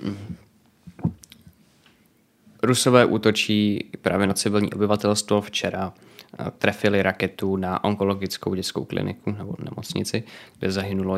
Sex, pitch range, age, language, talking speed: male, 95-105 Hz, 20-39, Czech, 90 wpm